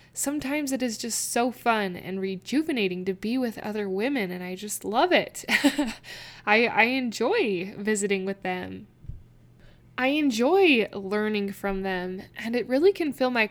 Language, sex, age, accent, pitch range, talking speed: English, female, 10-29, American, 195-245 Hz, 155 wpm